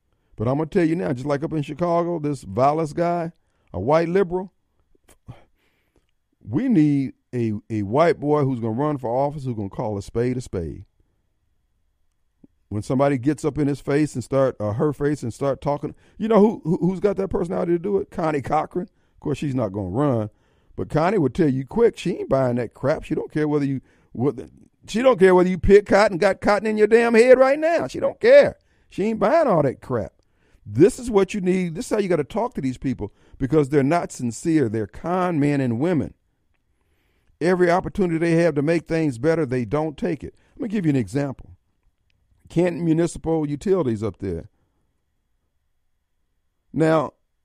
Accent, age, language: American, 50-69, English